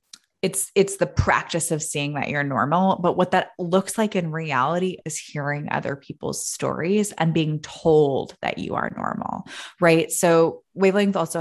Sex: female